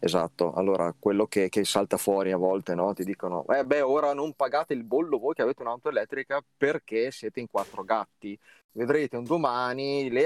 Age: 30-49